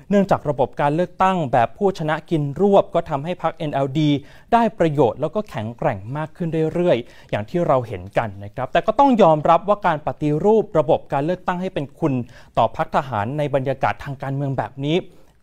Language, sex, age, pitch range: Thai, male, 30-49, 125-170 Hz